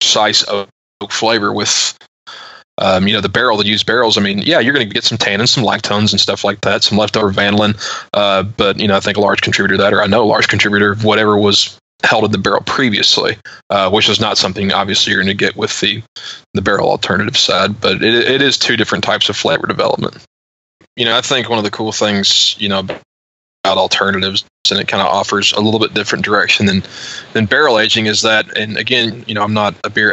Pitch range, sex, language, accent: 100-110 Hz, male, English, American